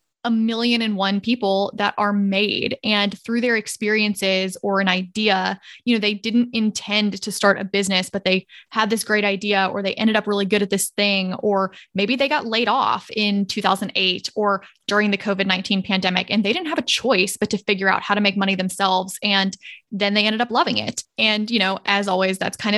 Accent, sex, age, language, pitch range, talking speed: American, female, 20-39, English, 195-225 Hz, 215 wpm